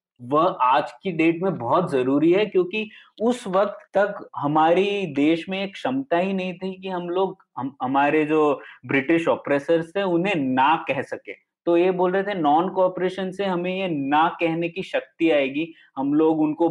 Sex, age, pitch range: male, 20-39, 145-195 Hz